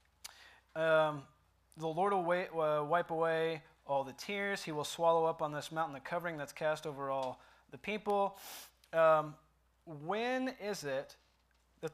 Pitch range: 125-150 Hz